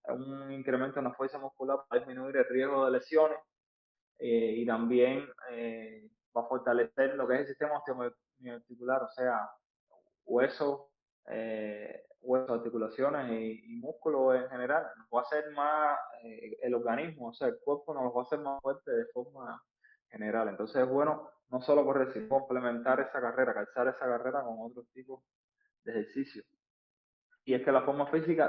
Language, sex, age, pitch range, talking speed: Spanish, male, 20-39, 115-140 Hz, 170 wpm